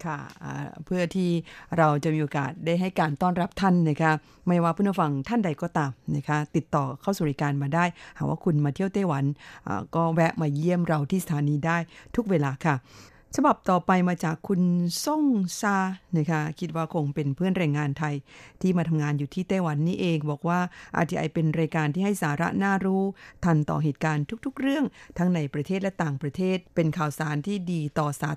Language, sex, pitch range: Thai, female, 150-185 Hz